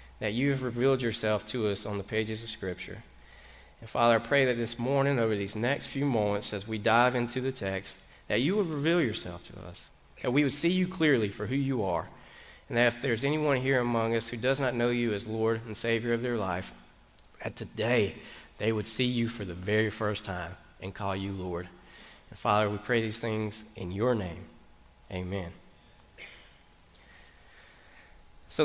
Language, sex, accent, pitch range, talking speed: English, male, American, 100-130 Hz, 195 wpm